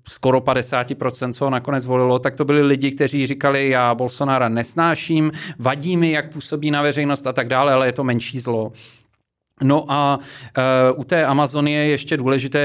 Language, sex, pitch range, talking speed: Czech, male, 125-140 Hz, 180 wpm